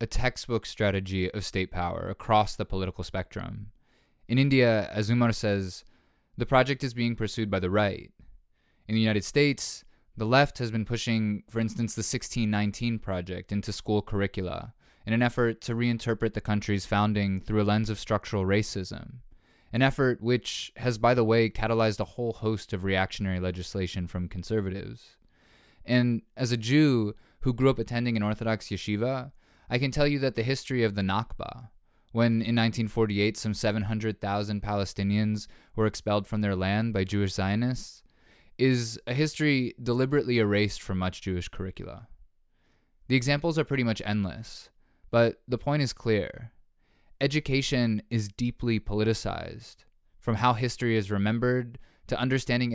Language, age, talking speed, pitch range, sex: English, 20-39, 155 wpm, 100-120 Hz, male